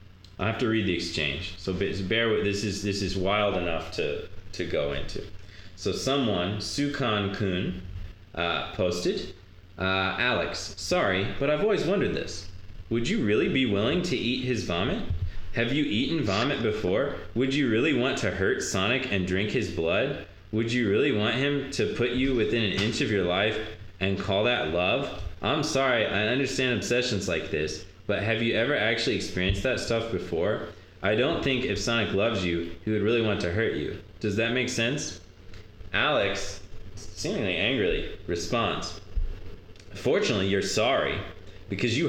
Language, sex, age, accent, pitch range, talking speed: English, male, 20-39, American, 95-125 Hz, 170 wpm